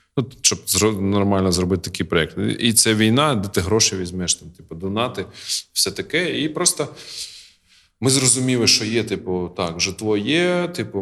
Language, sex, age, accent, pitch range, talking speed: Ukrainian, male, 20-39, native, 95-115 Hz, 150 wpm